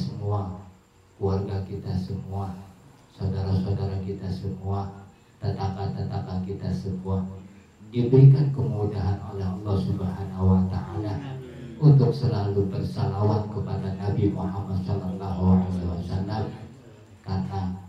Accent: native